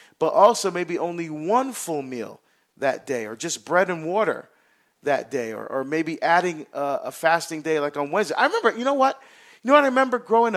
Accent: American